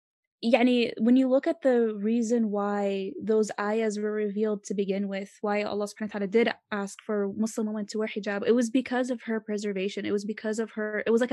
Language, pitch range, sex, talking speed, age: English, 195-230 Hz, female, 215 wpm, 10-29